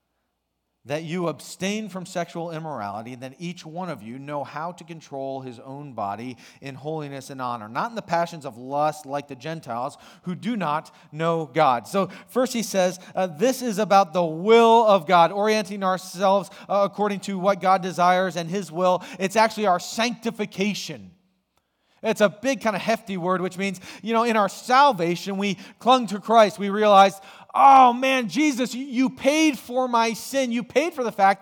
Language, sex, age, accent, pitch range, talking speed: English, male, 40-59, American, 175-240 Hz, 185 wpm